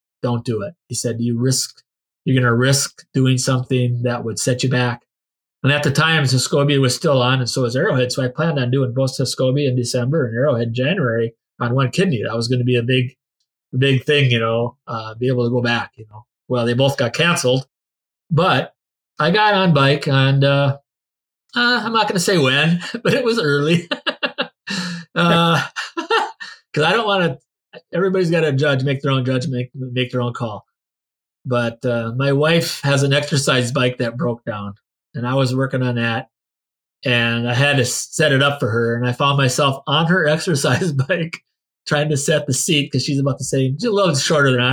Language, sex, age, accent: English, male, 30-49, American